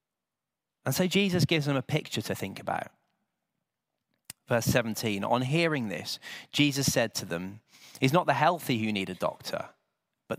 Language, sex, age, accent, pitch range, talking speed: English, male, 30-49, British, 125-175 Hz, 160 wpm